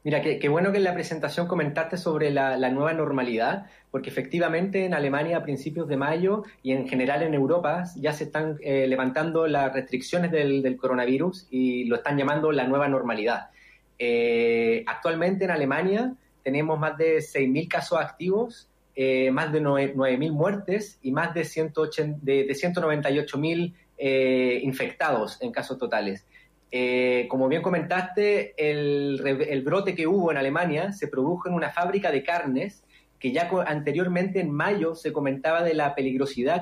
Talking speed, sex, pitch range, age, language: 160 wpm, male, 135-170 Hz, 30-49, Spanish